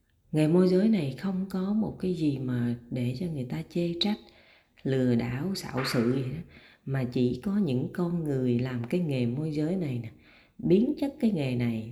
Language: Vietnamese